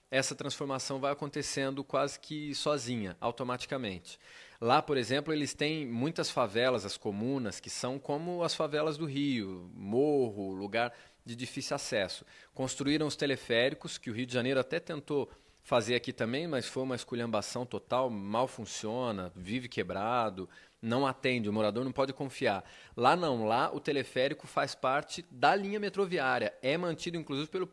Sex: male